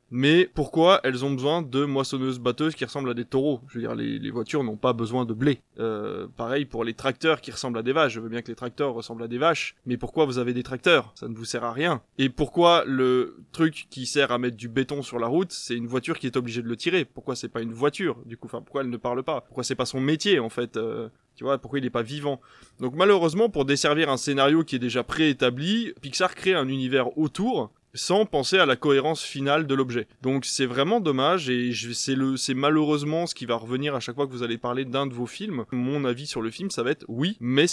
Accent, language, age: French, French, 20-39